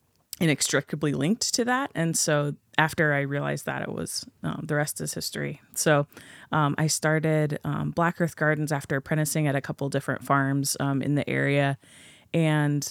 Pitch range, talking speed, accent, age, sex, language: 140-160 Hz, 170 wpm, American, 20-39, female, English